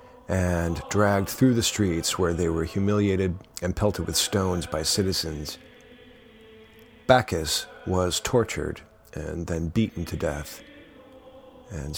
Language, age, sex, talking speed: English, 40-59, male, 120 wpm